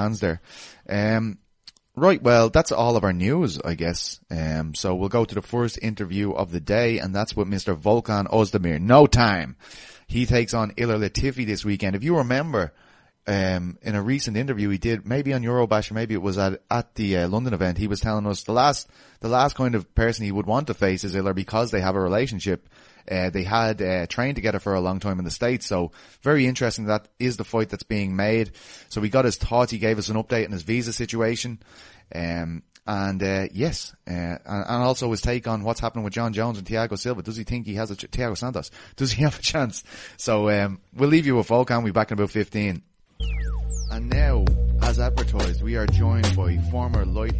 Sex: male